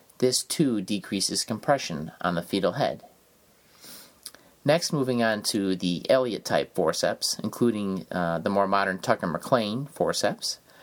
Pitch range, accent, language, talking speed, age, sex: 100-125 Hz, American, English, 120 wpm, 30-49, male